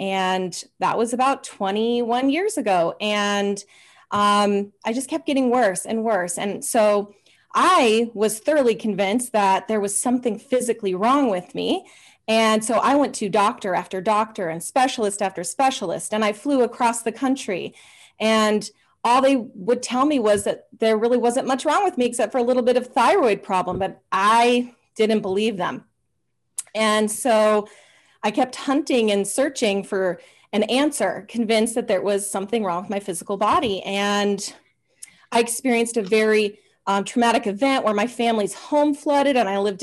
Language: English